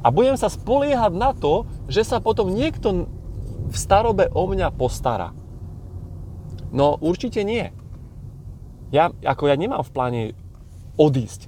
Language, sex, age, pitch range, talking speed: Slovak, male, 30-49, 120-165 Hz, 130 wpm